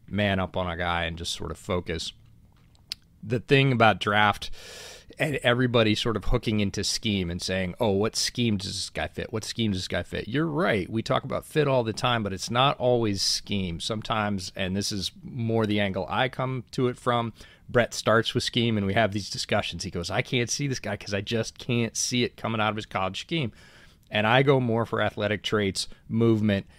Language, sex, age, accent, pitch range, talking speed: English, male, 30-49, American, 95-120 Hz, 220 wpm